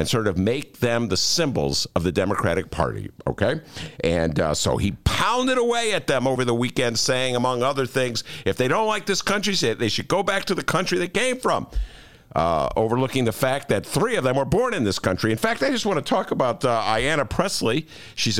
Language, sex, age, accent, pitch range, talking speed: English, male, 50-69, American, 110-180 Hz, 220 wpm